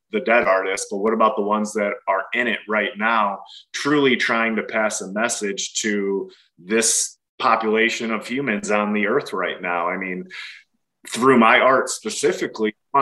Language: English